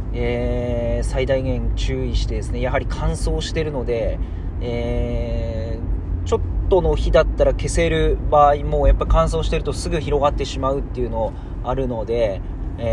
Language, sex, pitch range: Japanese, male, 90-135 Hz